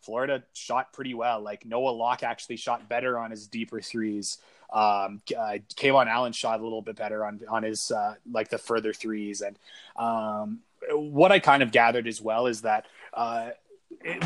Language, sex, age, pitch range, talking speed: English, male, 20-39, 115-150 Hz, 180 wpm